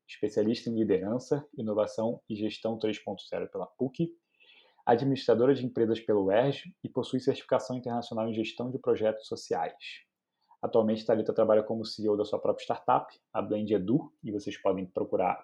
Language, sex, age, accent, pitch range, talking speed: Portuguese, male, 20-39, Brazilian, 110-130 Hz, 150 wpm